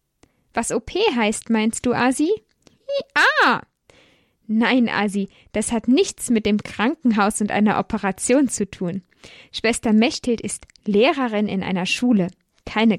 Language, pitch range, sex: German, 195-260 Hz, female